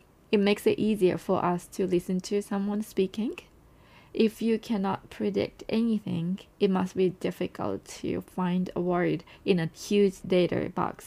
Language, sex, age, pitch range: Japanese, female, 20-39, 170-200 Hz